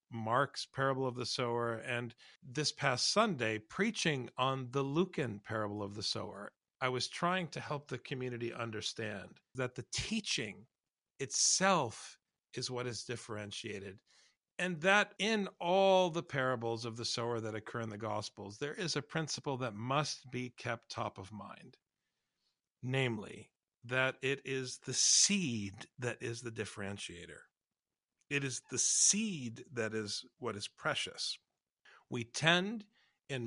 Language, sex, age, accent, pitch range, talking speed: English, male, 50-69, American, 115-140 Hz, 145 wpm